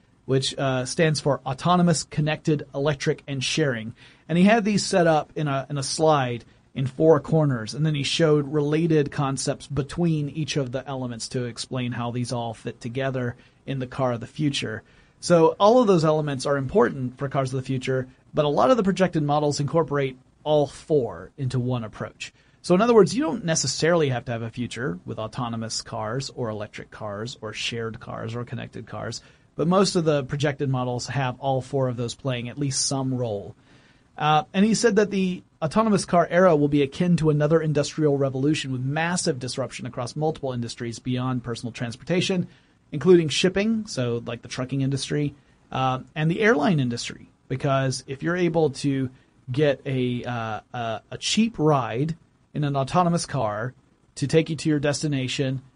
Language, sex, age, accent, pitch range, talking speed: English, male, 40-59, American, 125-155 Hz, 185 wpm